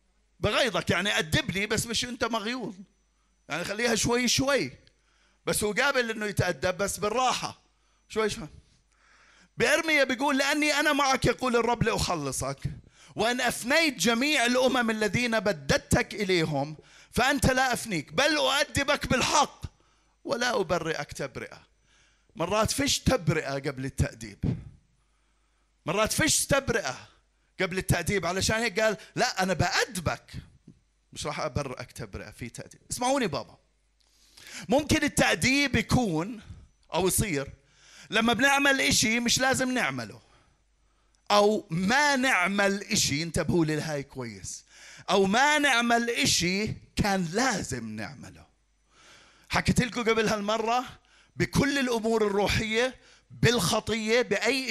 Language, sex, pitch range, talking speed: Arabic, male, 170-240 Hz, 115 wpm